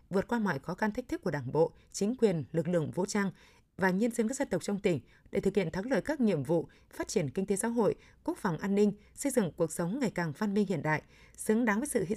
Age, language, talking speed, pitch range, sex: 20-39, Vietnamese, 280 wpm, 175-220 Hz, female